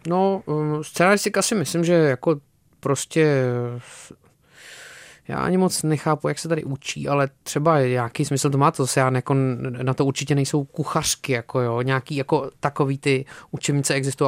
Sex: male